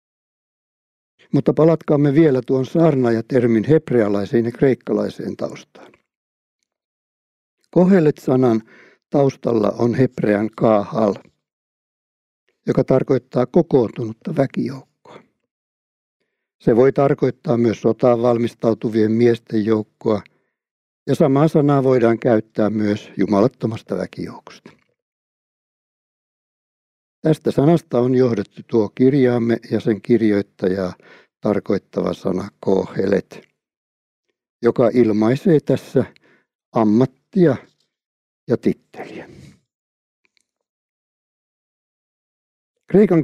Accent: native